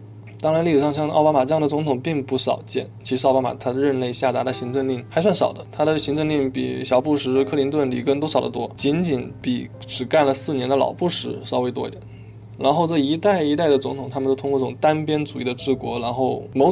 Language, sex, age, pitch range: Chinese, male, 20-39, 120-140 Hz